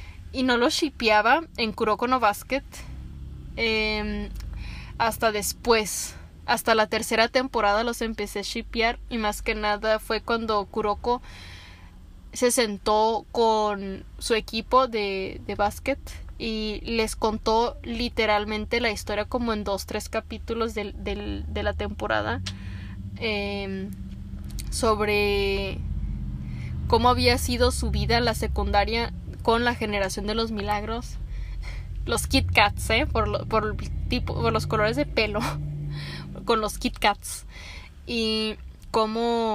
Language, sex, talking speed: Spanish, female, 130 wpm